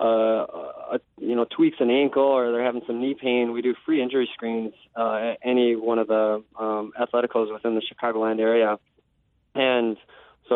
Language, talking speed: English, 175 wpm